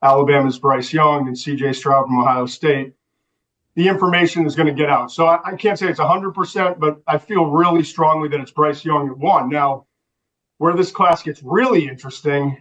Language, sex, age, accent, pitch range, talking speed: English, male, 40-59, American, 150-175 Hz, 200 wpm